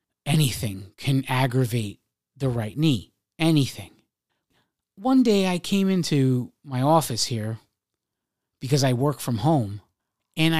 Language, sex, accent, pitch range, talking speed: English, male, American, 120-175 Hz, 120 wpm